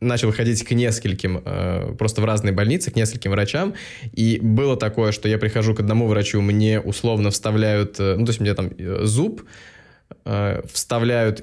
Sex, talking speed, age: male, 160 wpm, 20-39